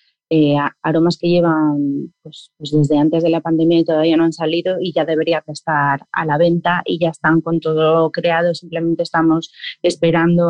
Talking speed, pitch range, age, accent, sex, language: 185 wpm, 165-200 Hz, 30-49, Spanish, female, Spanish